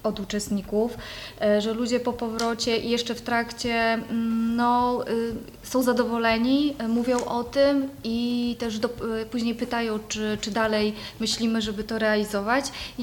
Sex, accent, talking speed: female, native, 125 wpm